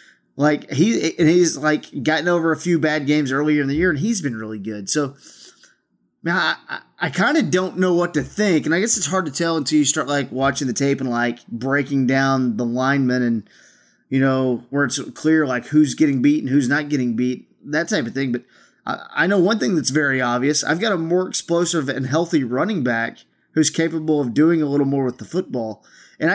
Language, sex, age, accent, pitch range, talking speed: English, male, 20-39, American, 135-175 Hz, 225 wpm